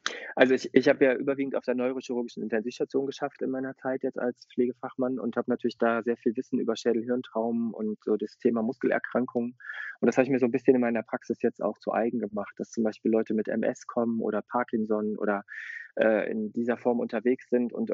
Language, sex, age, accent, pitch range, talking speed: German, male, 20-39, German, 115-130 Hz, 215 wpm